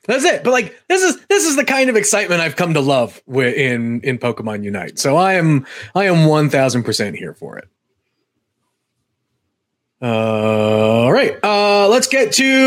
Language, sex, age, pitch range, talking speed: English, male, 30-49, 145-220 Hz, 175 wpm